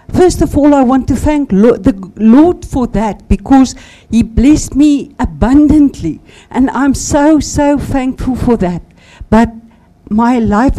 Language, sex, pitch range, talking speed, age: English, female, 210-280 Hz, 150 wpm, 60-79